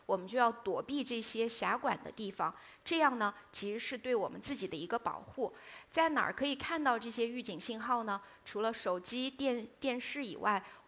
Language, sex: Chinese, female